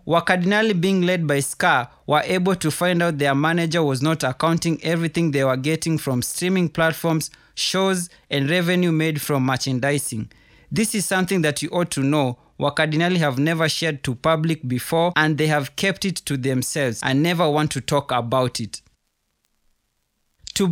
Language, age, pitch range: English, 20-39, 140-175 Hz